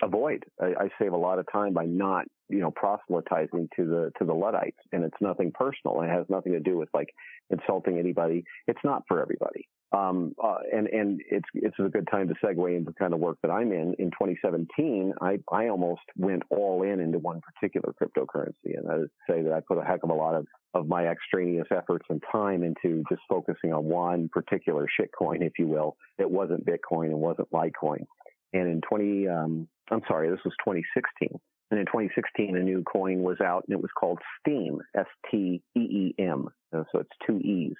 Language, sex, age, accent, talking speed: English, male, 40-59, American, 200 wpm